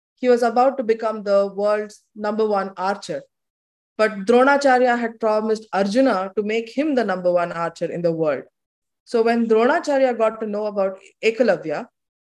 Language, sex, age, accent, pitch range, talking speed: English, female, 20-39, Indian, 210-260 Hz, 160 wpm